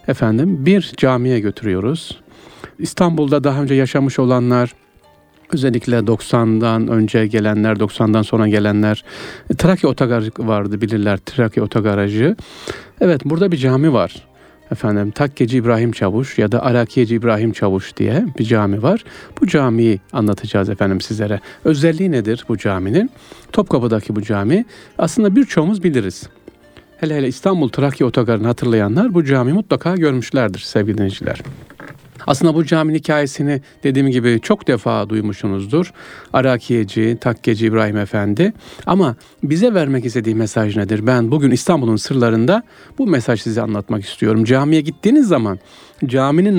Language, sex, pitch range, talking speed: Turkish, male, 110-155 Hz, 130 wpm